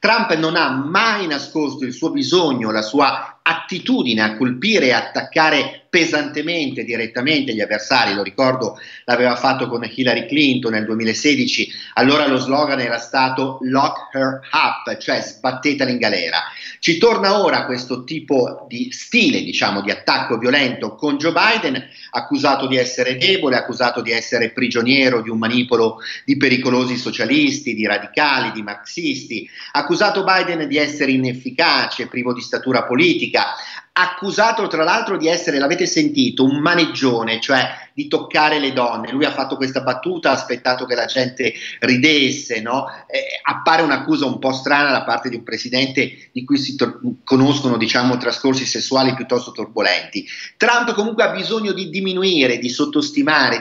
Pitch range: 125-185 Hz